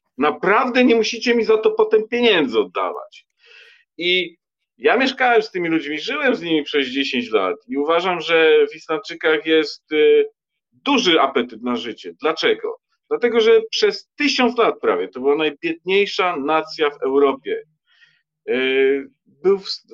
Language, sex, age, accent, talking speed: Polish, male, 40-59, native, 135 wpm